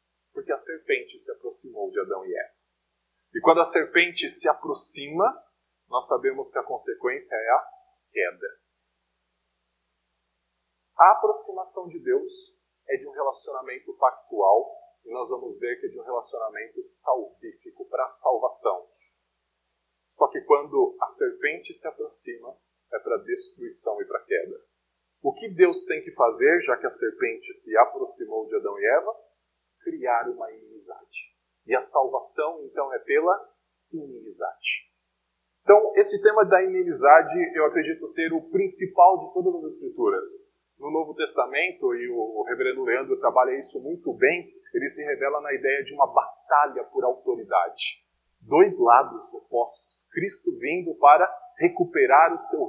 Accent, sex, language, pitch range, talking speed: Brazilian, male, Portuguese, 360-410 Hz, 145 wpm